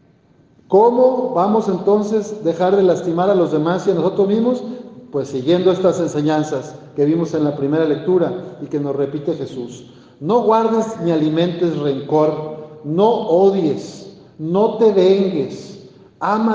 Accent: Mexican